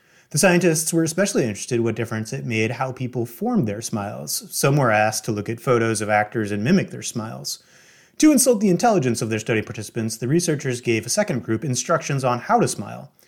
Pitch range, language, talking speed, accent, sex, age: 110-165 Hz, English, 210 wpm, American, male, 30-49